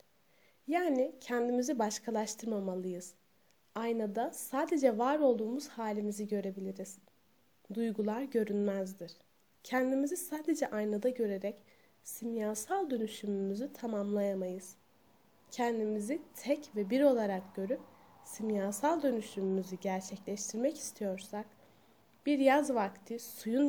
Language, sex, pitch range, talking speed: Turkish, female, 205-250 Hz, 80 wpm